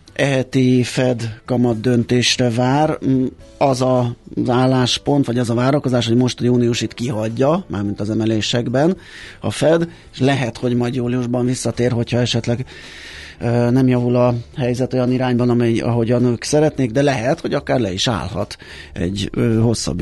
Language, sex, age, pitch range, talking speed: Hungarian, male, 30-49, 105-125 Hz, 145 wpm